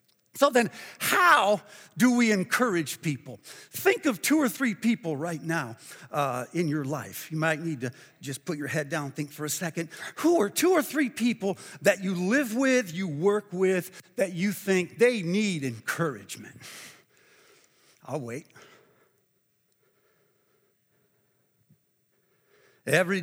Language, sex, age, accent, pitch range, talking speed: English, male, 60-79, American, 155-210 Hz, 140 wpm